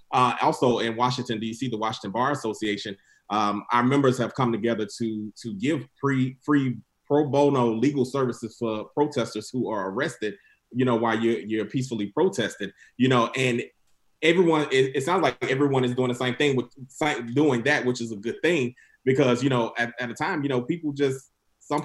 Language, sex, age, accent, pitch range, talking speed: English, male, 20-39, American, 115-135 Hz, 190 wpm